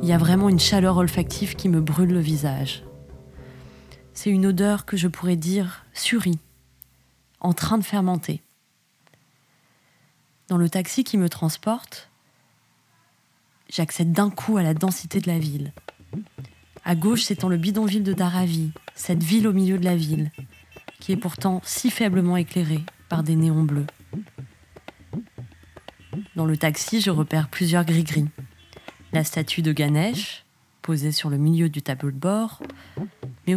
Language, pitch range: French, 145-195 Hz